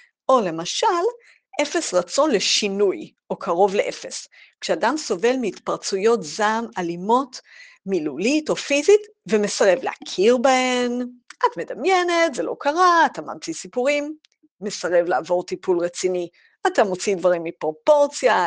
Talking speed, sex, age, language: 115 wpm, female, 50-69, Hebrew